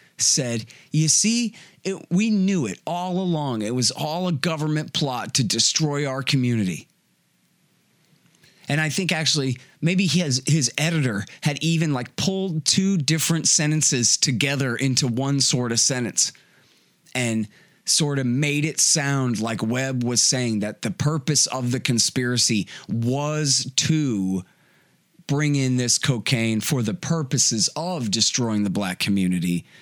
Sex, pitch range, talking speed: male, 115-155 Hz, 140 wpm